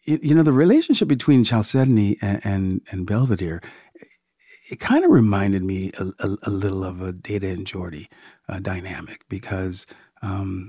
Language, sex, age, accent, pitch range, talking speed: English, male, 50-69, American, 100-130 Hz, 155 wpm